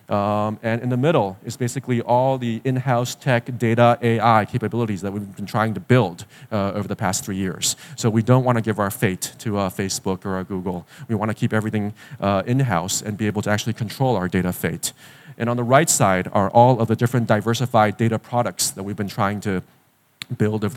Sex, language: male, English